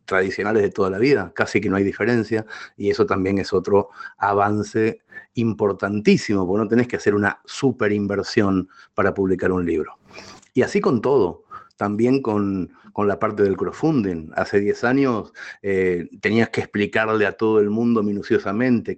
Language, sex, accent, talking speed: Spanish, male, Argentinian, 165 wpm